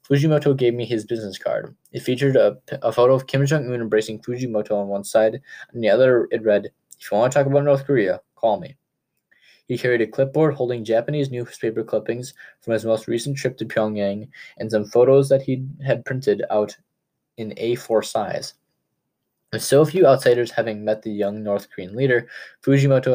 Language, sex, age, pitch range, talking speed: English, male, 10-29, 110-135 Hz, 185 wpm